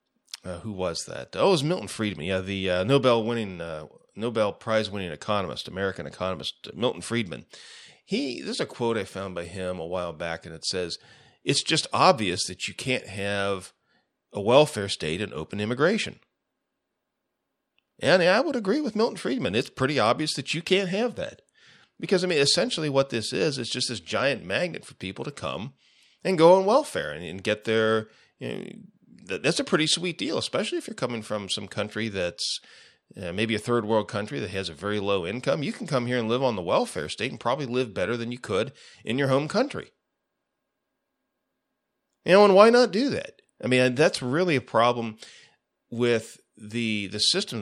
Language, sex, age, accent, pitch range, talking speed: English, male, 40-59, American, 100-135 Hz, 190 wpm